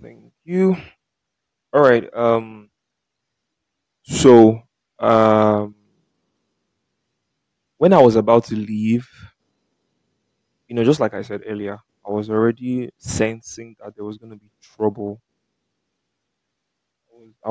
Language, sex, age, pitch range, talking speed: English, male, 20-39, 105-115 Hz, 105 wpm